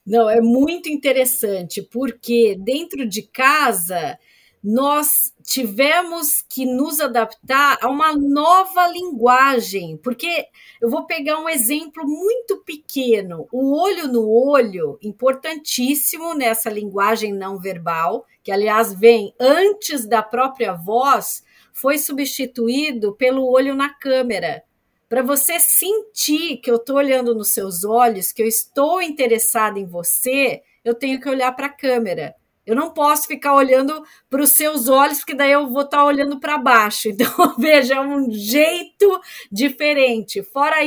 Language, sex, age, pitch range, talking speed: Portuguese, female, 40-59, 235-300 Hz, 140 wpm